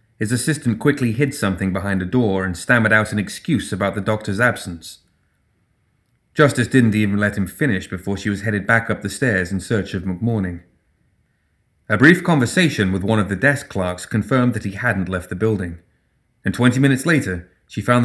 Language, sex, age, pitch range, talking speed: English, male, 30-49, 95-125 Hz, 190 wpm